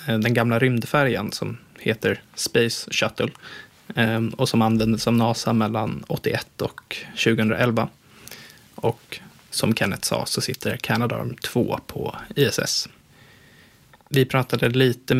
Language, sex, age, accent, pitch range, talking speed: Swedish, male, 20-39, native, 110-130 Hz, 115 wpm